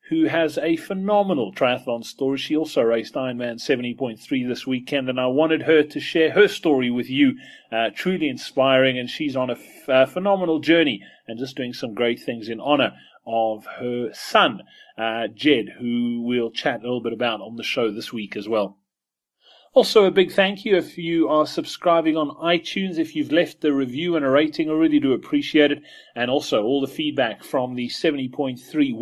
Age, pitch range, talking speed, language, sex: 30-49, 125-180 Hz, 190 wpm, English, male